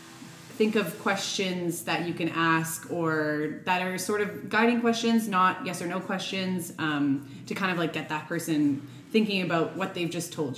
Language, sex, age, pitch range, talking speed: English, female, 20-39, 155-190 Hz, 185 wpm